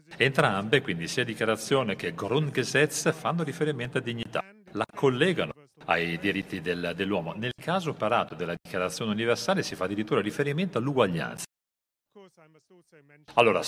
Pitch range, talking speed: 105-155 Hz, 120 wpm